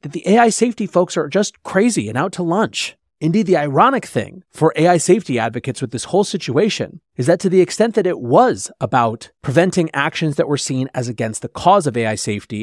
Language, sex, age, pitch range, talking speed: English, male, 30-49, 125-175 Hz, 210 wpm